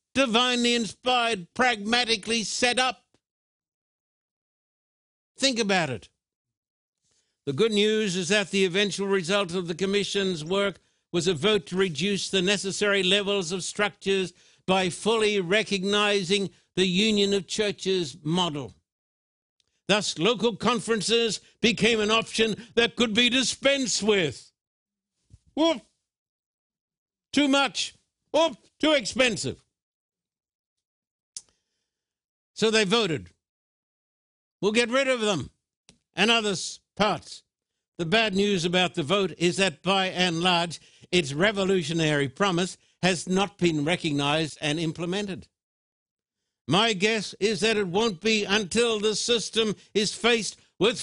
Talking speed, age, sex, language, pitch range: 115 wpm, 60-79, male, English, 175-225 Hz